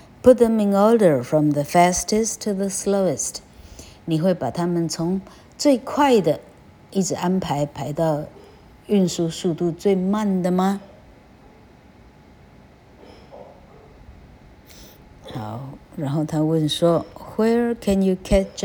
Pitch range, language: 150-185 Hz, Chinese